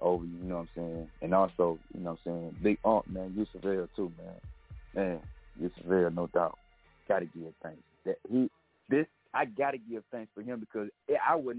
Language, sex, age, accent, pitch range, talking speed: English, male, 30-49, American, 85-105 Hz, 205 wpm